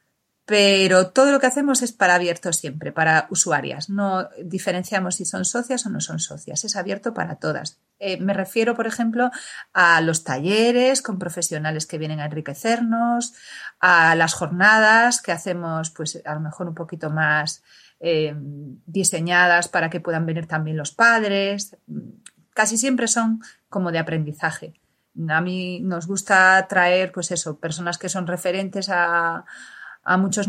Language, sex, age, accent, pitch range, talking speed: Spanish, female, 30-49, Spanish, 165-210 Hz, 155 wpm